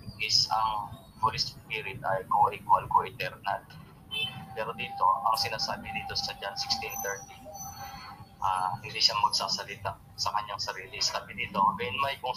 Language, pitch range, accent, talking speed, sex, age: English, 110-130 Hz, Filipino, 140 wpm, male, 20-39